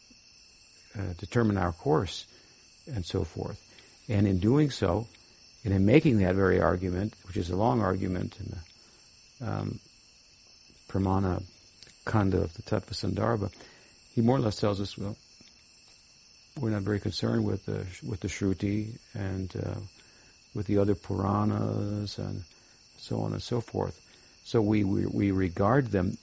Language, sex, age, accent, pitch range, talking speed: English, male, 60-79, American, 95-115 Hz, 150 wpm